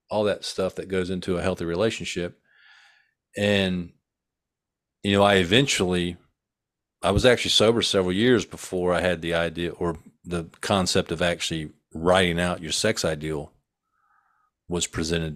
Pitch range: 85-105 Hz